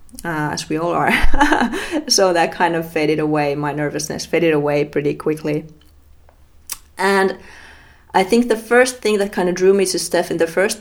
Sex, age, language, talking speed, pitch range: female, 20-39, Finnish, 185 wpm, 150-180 Hz